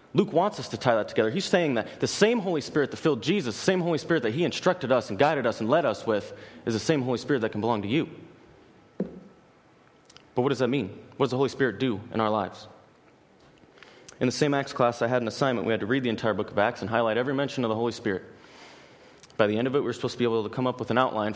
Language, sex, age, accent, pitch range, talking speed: English, male, 30-49, American, 110-135 Hz, 280 wpm